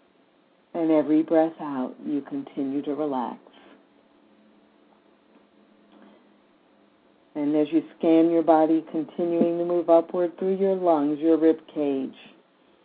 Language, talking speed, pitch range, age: English, 110 wpm, 150-175 Hz, 50-69